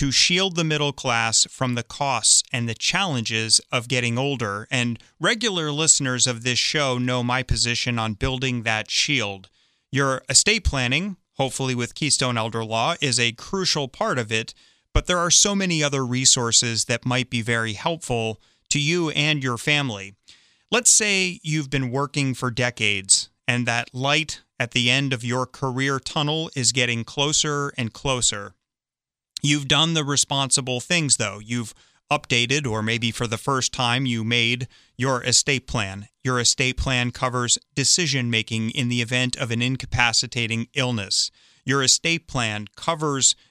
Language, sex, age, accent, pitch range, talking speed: English, male, 30-49, American, 120-140 Hz, 160 wpm